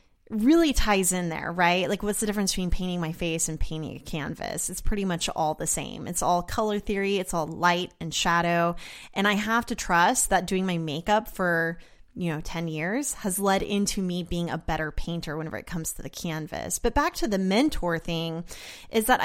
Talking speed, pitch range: 210 wpm, 165-205 Hz